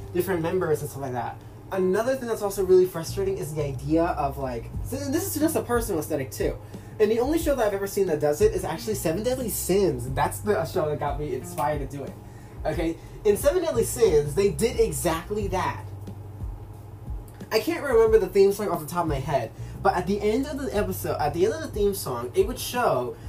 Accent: American